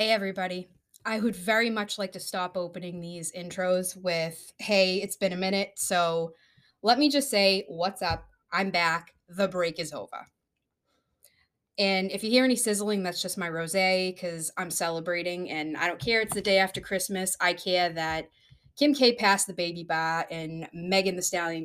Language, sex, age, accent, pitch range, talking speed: English, female, 20-39, American, 170-205 Hz, 185 wpm